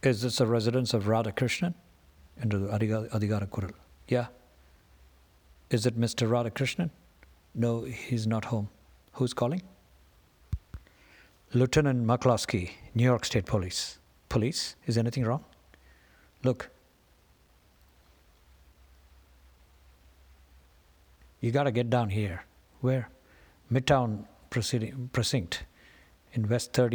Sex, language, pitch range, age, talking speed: male, Tamil, 85-125 Hz, 50-69, 100 wpm